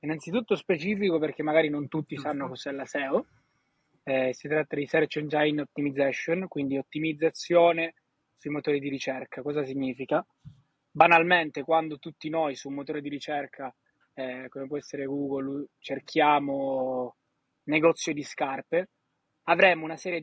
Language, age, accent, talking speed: Italian, 20-39, native, 135 wpm